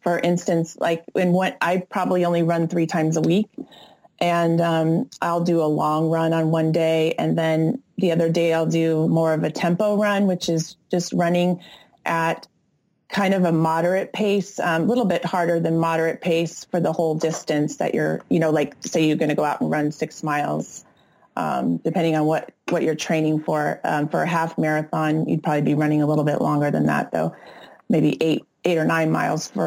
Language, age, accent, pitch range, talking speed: English, 30-49, American, 160-180 Hz, 205 wpm